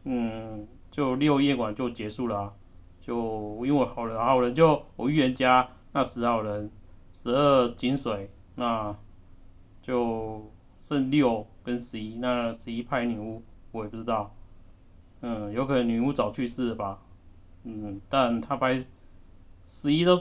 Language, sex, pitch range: Chinese, male, 100-130 Hz